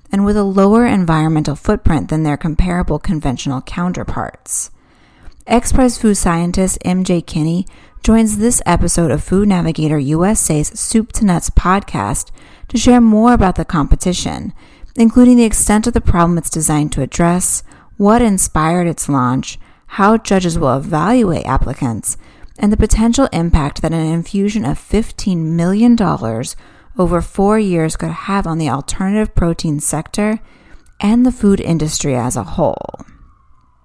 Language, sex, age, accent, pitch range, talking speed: English, female, 30-49, American, 155-210 Hz, 140 wpm